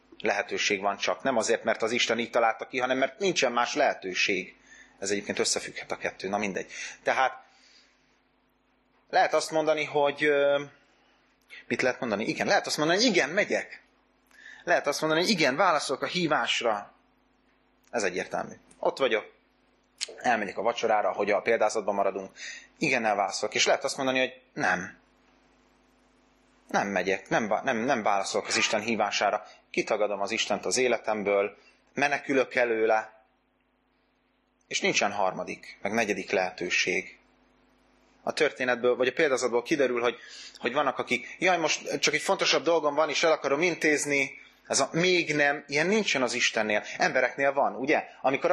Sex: male